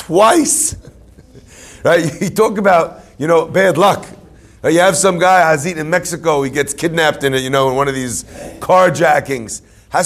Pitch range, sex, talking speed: 135-215 Hz, male, 180 wpm